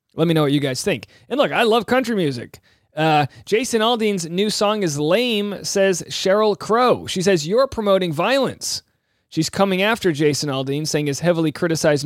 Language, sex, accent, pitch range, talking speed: English, male, American, 150-200 Hz, 185 wpm